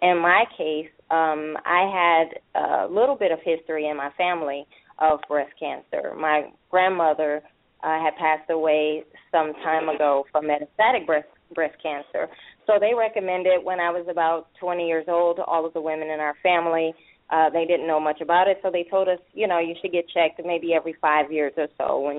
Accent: American